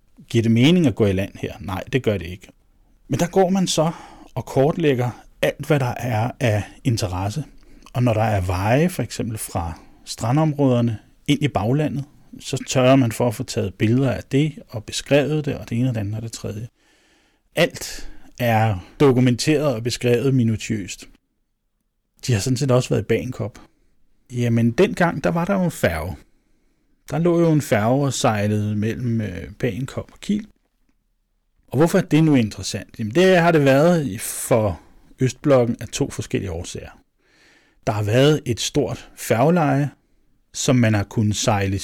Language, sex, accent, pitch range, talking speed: Danish, male, native, 110-140 Hz, 170 wpm